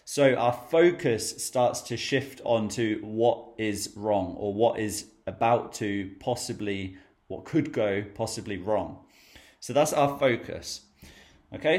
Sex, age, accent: male, 30-49, British